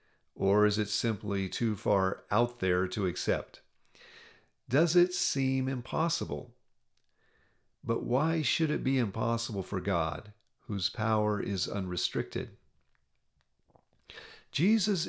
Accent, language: American, English